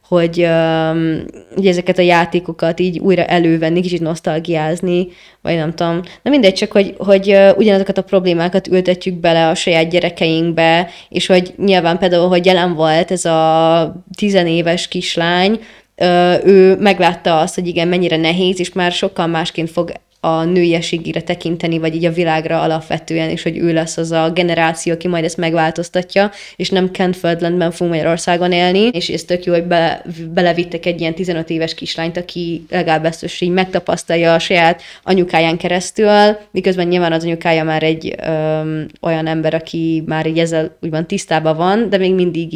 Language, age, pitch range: Hungarian, 20-39, 165-185 Hz